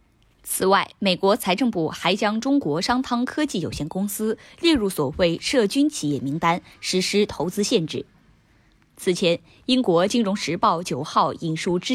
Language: Chinese